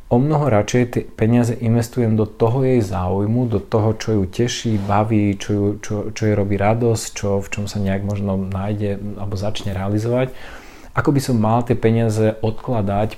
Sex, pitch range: male, 100-115 Hz